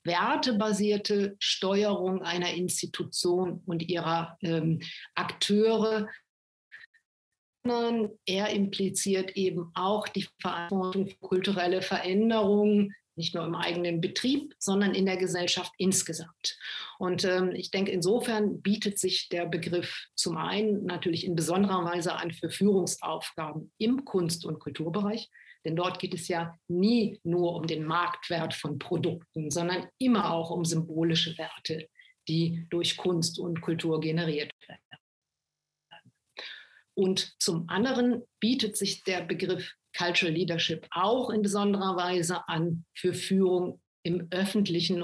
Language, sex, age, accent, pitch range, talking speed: German, female, 50-69, German, 170-200 Hz, 125 wpm